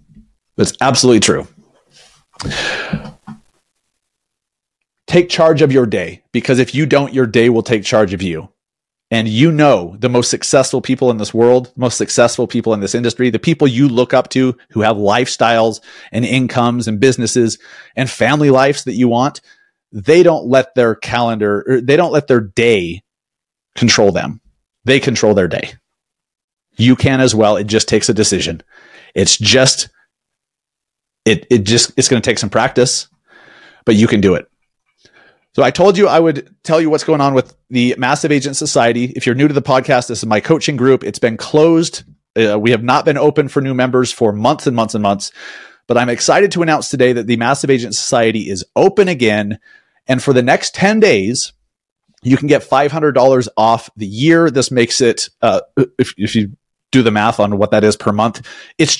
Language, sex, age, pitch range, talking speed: English, male, 30-49, 115-140 Hz, 185 wpm